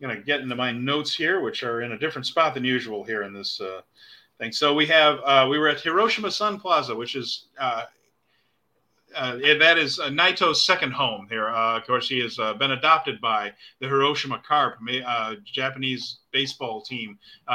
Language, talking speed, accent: English, 195 wpm, American